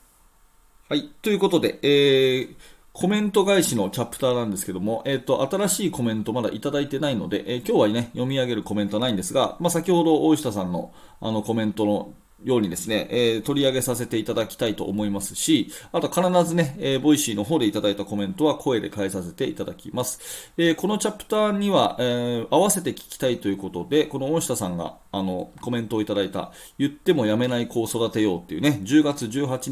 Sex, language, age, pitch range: male, Japanese, 30-49, 105-150 Hz